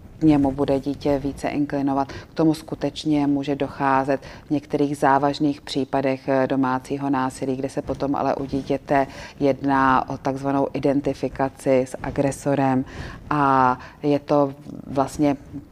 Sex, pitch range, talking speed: female, 135-145 Hz, 125 wpm